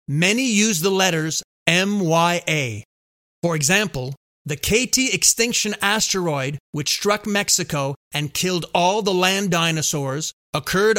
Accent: American